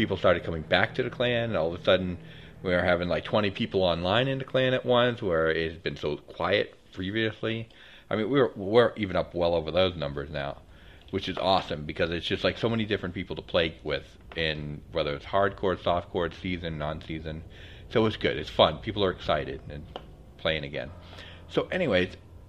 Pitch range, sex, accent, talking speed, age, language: 75-105 Hz, male, American, 200 wpm, 40-59, English